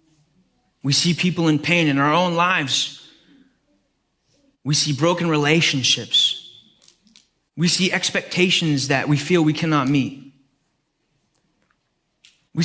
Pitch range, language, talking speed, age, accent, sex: 135-180 Hz, English, 110 wpm, 20-39, American, male